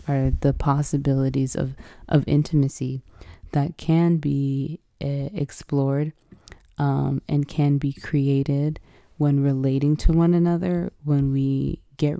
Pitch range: 135-155 Hz